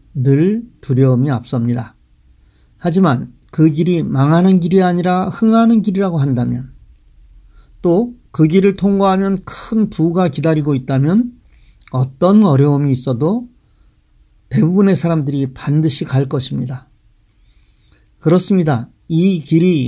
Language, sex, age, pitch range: Korean, male, 40-59, 135-180 Hz